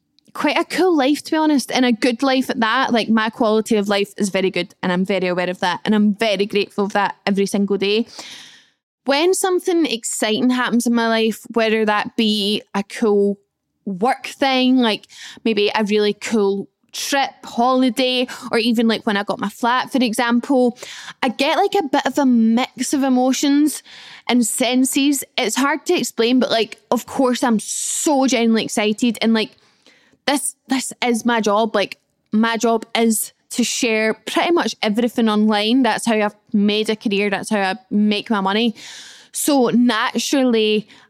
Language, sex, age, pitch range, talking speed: English, female, 10-29, 215-255 Hz, 180 wpm